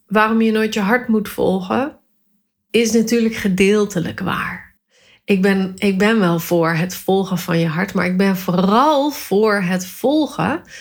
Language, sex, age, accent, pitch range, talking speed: Dutch, female, 30-49, Dutch, 185-230 Hz, 155 wpm